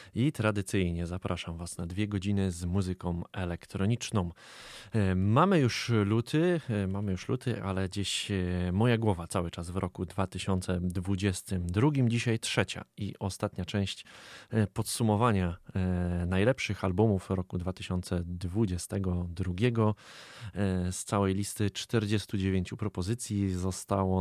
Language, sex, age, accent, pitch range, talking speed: Polish, male, 20-39, native, 90-105 Hz, 100 wpm